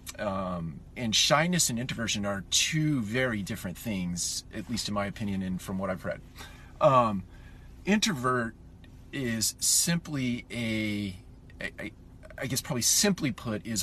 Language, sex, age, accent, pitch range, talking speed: English, male, 40-59, American, 100-125 Hz, 145 wpm